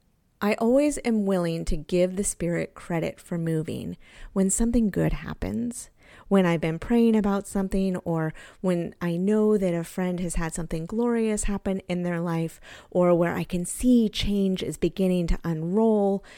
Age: 30-49